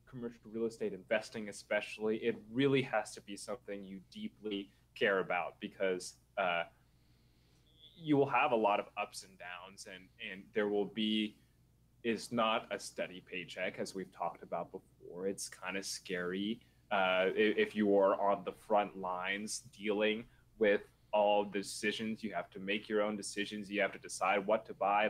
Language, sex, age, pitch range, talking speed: English, male, 20-39, 100-135 Hz, 170 wpm